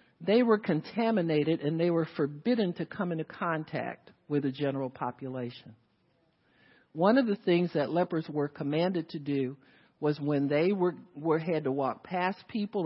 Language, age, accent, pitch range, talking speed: English, 50-69, American, 140-180 Hz, 165 wpm